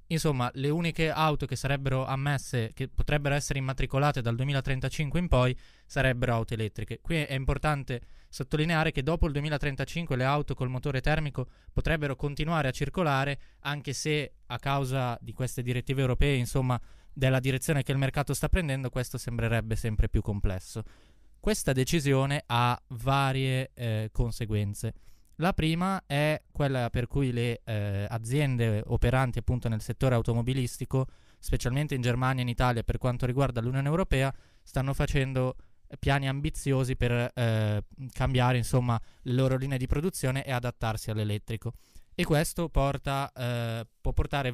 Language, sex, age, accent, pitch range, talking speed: Italian, male, 20-39, native, 120-145 Hz, 145 wpm